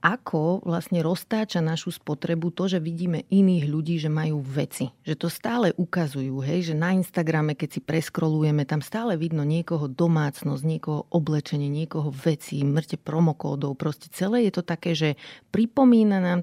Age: 30-49